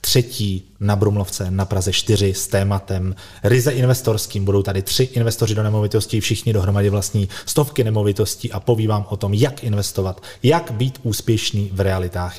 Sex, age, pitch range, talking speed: male, 30-49, 100-135 Hz, 155 wpm